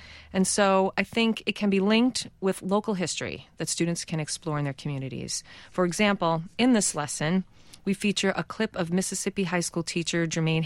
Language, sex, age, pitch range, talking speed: English, female, 40-59, 150-190 Hz, 185 wpm